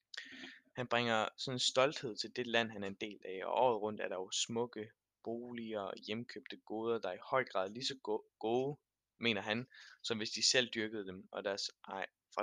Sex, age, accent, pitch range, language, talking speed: male, 20-39, native, 100-120 Hz, Danish, 200 wpm